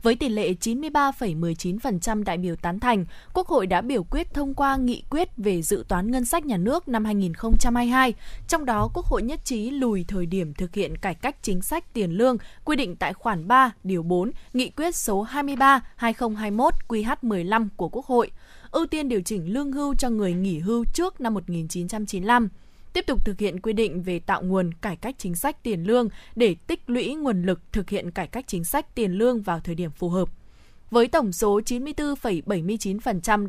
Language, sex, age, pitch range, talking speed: Vietnamese, female, 20-39, 190-260 Hz, 190 wpm